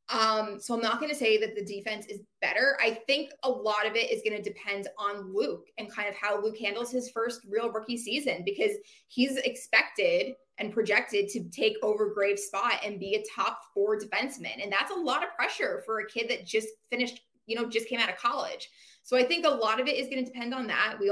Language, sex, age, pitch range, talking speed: English, female, 20-39, 205-260 Hz, 240 wpm